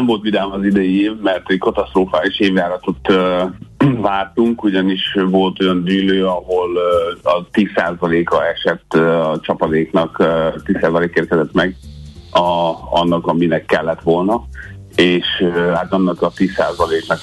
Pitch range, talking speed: 85-95 Hz, 135 wpm